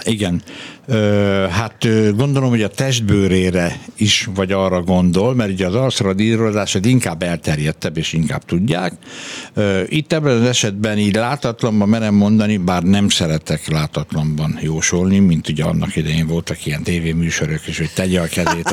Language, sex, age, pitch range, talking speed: Hungarian, male, 60-79, 85-110 Hz, 140 wpm